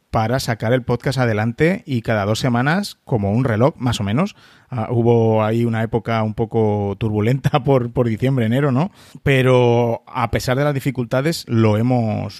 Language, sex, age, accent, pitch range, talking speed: Spanish, male, 30-49, Spanish, 110-140 Hz, 175 wpm